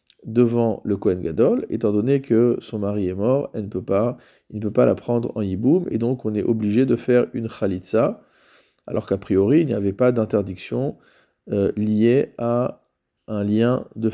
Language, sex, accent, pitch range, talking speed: French, male, French, 110-125 Hz, 195 wpm